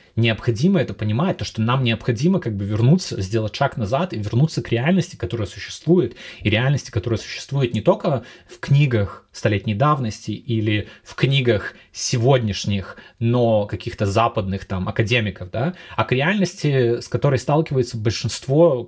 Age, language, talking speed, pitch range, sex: 20-39, Russian, 145 wpm, 105-140 Hz, male